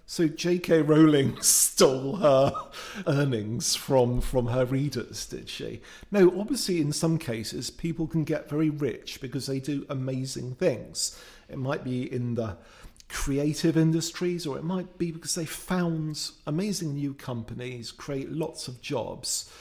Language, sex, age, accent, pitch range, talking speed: English, male, 50-69, British, 120-160 Hz, 145 wpm